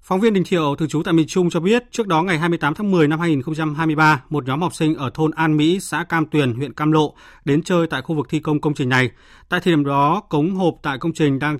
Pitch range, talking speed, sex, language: 140-170 Hz, 275 wpm, male, Vietnamese